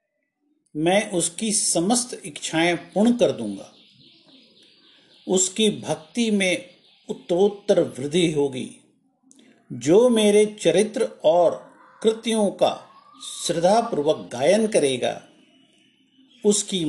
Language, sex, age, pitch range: Hindi, male, 50-69, 150-240 Hz